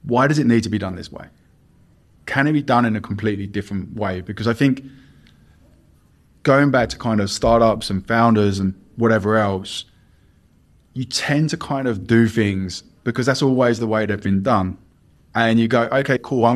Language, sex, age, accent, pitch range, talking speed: English, male, 20-39, British, 100-115 Hz, 190 wpm